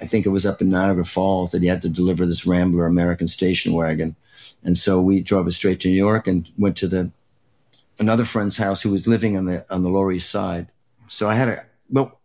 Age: 60-79